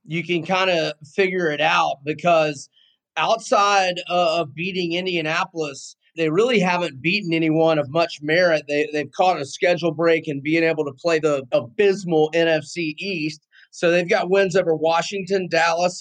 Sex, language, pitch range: male, English, 155-185 Hz